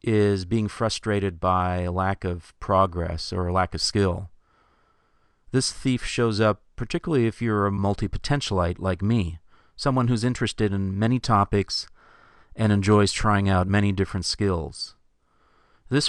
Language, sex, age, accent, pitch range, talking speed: English, male, 40-59, American, 95-110 Hz, 140 wpm